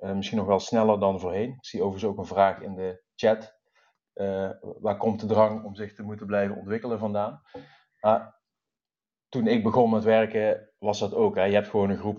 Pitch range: 100-110 Hz